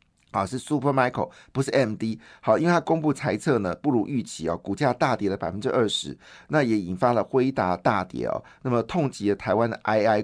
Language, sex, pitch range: Chinese, male, 105-135 Hz